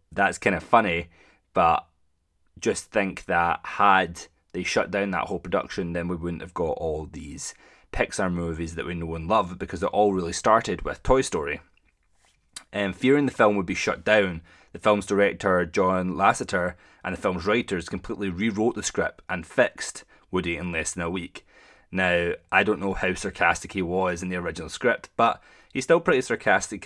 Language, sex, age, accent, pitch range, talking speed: English, male, 20-39, British, 85-100 Hz, 185 wpm